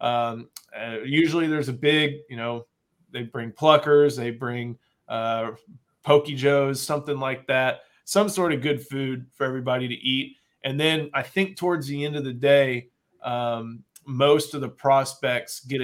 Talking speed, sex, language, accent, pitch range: 165 wpm, male, English, American, 125-150 Hz